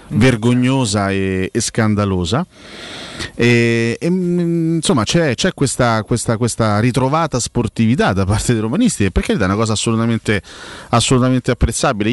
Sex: male